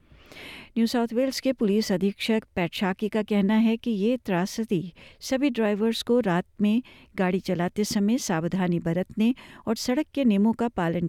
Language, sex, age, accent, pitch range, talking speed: Hindi, female, 60-79, native, 185-230 Hz, 155 wpm